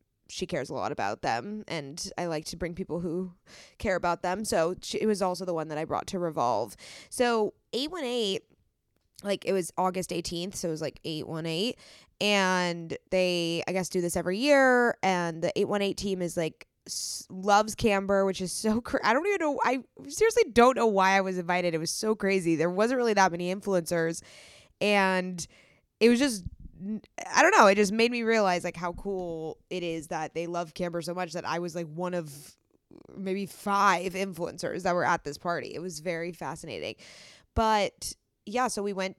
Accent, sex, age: American, female, 20-39